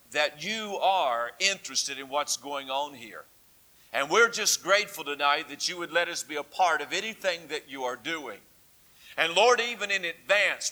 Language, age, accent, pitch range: English, 50-69, American, 145-195 Hz